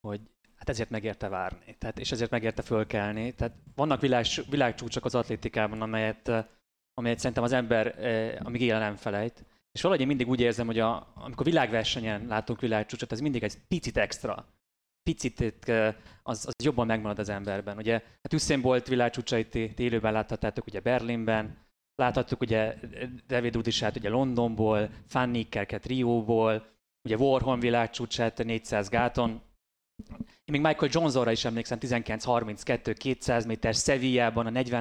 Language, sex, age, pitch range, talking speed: Hungarian, male, 20-39, 110-130 Hz, 145 wpm